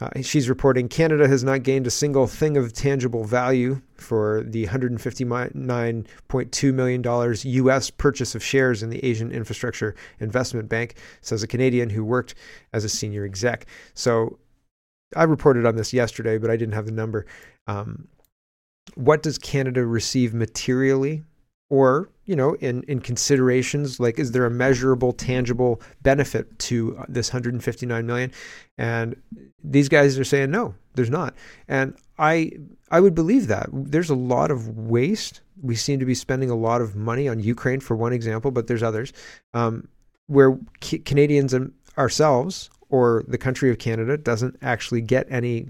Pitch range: 115-140 Hz